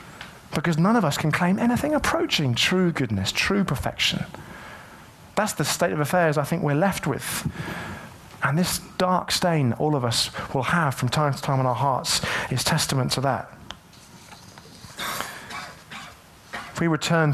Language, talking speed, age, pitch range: English, 155 wpm, 30-49, 120-150 Hz